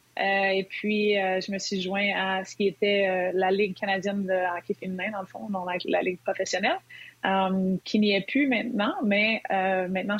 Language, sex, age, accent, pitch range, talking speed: French, female, 30-49, Canadian, 185-215 Hz, 210 wpm